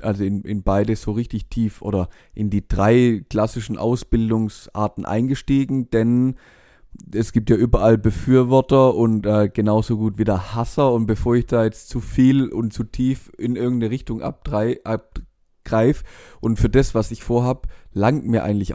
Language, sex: German, male